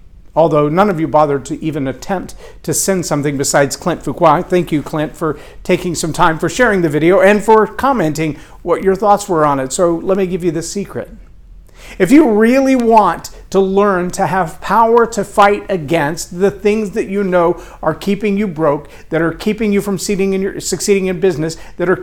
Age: 50-69